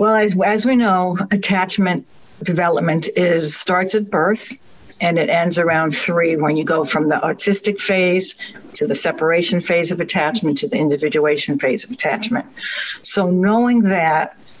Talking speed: 155 wpm